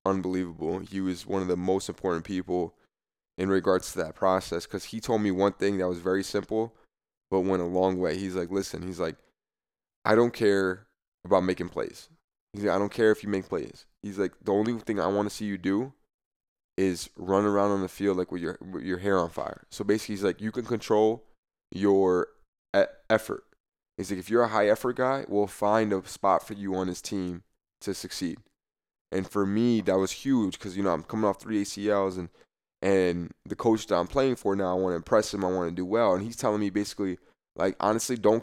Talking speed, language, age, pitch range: 225 wpm, English, 20-39, 95-110 Hz